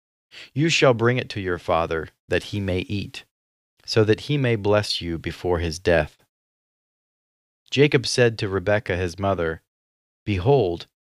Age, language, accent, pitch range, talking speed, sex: 30-49, English, American, 90-125 Hz, 145 wpm, male